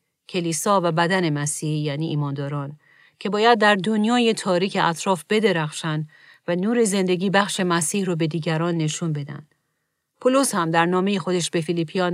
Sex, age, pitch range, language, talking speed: female, 40-59, 155-185 Hz, Persian, 150 wpm